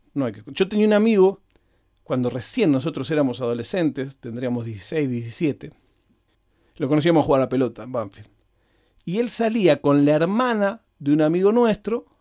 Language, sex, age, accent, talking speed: Spanish, male, 40-59, Argentinian, 155 wpm